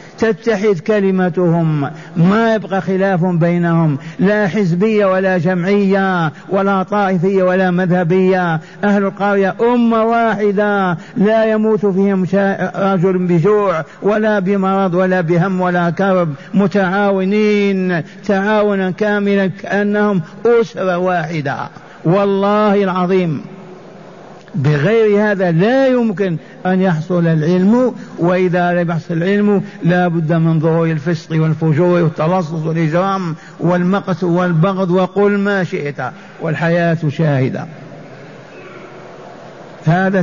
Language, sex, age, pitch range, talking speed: Arabic, male, 50-69, 175-200 Hz, 95 wpm